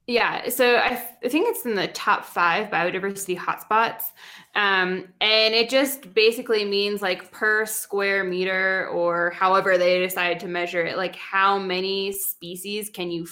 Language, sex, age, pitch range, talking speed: English, female, 20-39, 180-220 Hz, 160 wpm